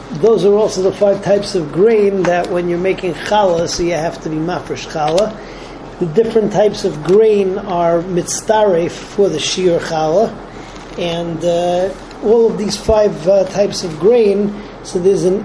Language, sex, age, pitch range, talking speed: English, male, 40-59, 170-200 Hz, 170 wpm